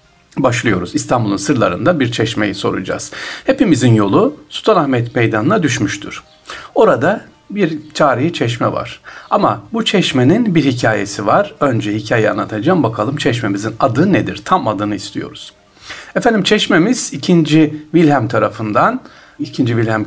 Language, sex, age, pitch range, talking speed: Turkish, male, 60-79, 110-165 Hz, 115 wpm